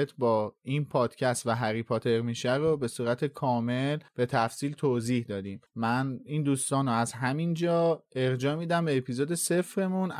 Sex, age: male, 30-49